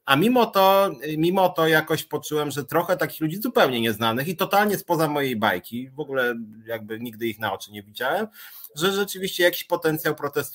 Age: 30-49